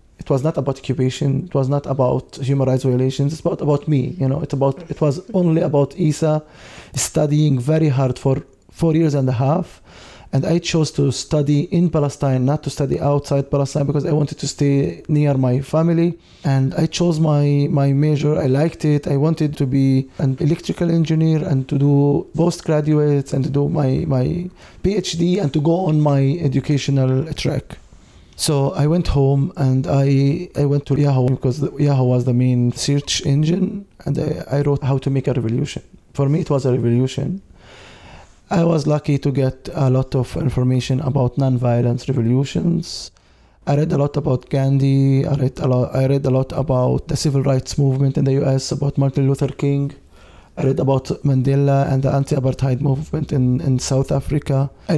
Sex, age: male, 20-39